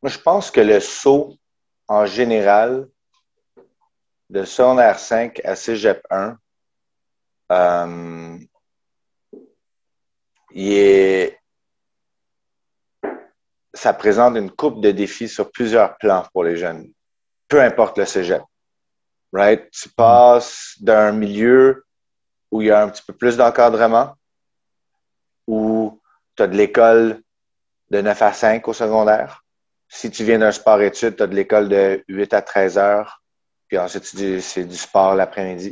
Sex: male